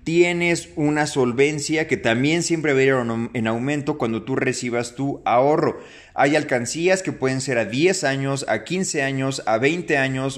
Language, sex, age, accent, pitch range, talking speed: Spanish, male, 30-49, Mexican, 120-155 Hz, 175 wpm